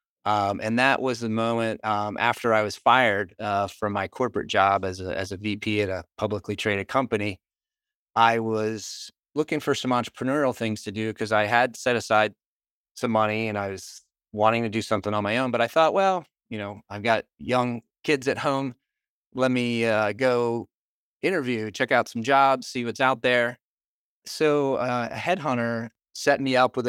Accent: American